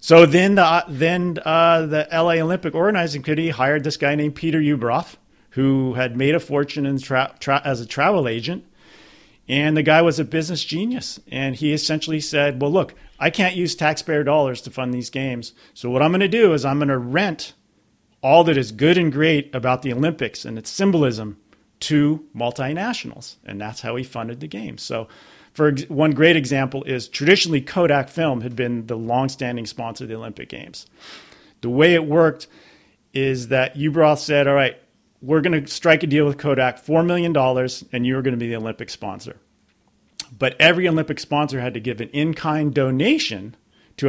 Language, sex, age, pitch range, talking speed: English, male, 40-59, 130-160 Hz, 190 wpm